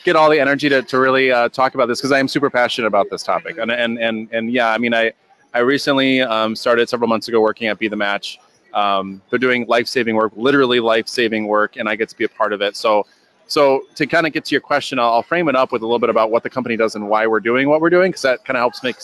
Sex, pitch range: male, 115-140 Hz